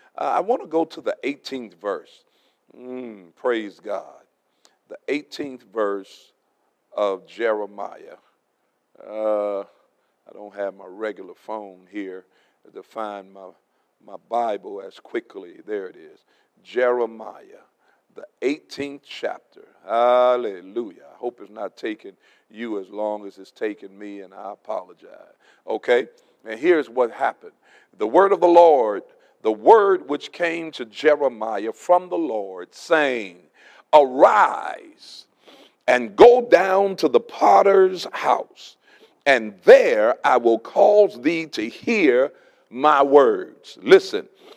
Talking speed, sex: 125 wpm, male